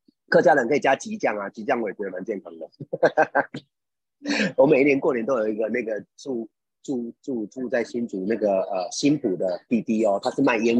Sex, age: male, 30-49